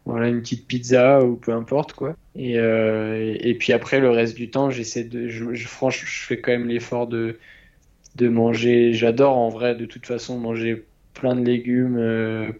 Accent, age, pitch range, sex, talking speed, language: French, 20-39, 115-125 Hz, male, 200 wpm, French